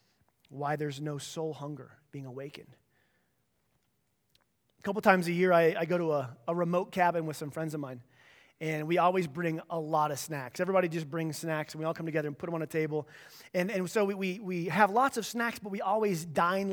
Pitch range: 165-215 Hz